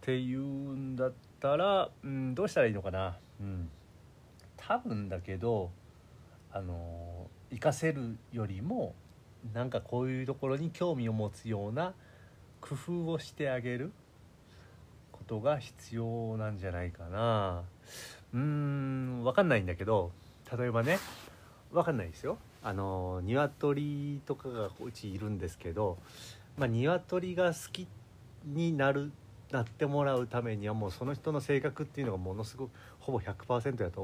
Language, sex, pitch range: Japanese, male, 100-135 Hz